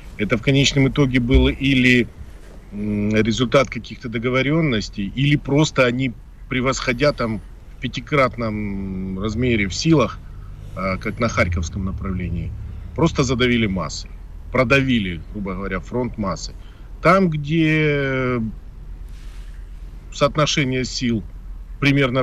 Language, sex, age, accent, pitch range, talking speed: Russian, male, 40-59, native, 100-130 Hz, 95 wpm